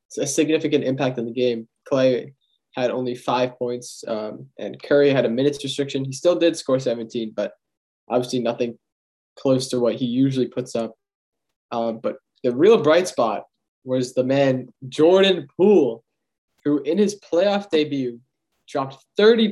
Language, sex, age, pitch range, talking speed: English, male, 20-39, 125-145 Hz, 155 wpm